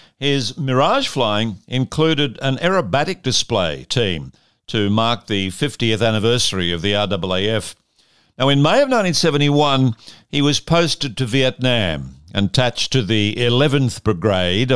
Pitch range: 100-140 Hz